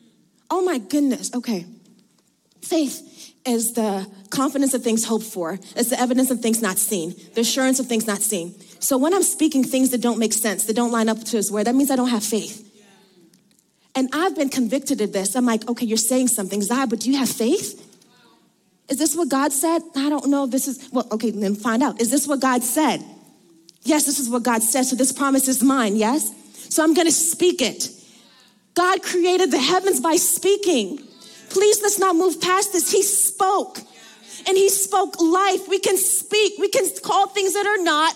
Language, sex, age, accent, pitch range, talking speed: English, female, 20-39, American, 225-360 Hz, 205 wpm